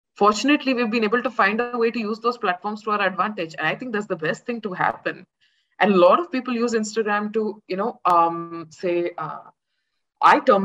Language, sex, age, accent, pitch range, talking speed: Hindi, female, 20-39, native, 185-260 Hz, 220 wpm